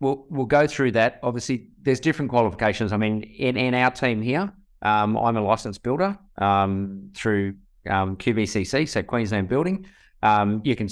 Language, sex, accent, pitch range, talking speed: English, male, Australian, 105-125 Hz, 170 wpm